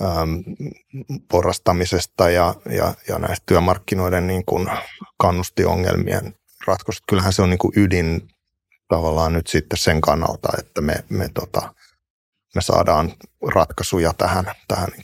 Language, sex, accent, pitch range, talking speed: Finnish, male, native, 90-100 Hz, 115 wpm